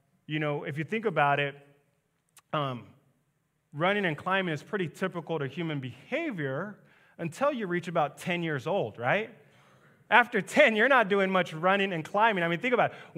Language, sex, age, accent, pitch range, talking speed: English, male, 30-49, American, 155-210 Hz, 180 wpm